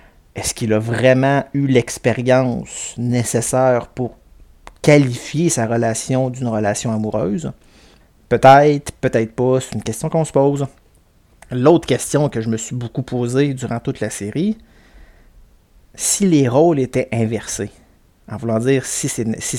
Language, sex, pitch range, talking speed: French, male, 115-140 Hz, 140 wpm